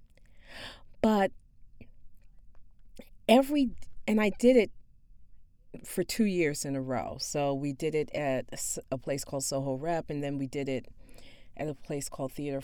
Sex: female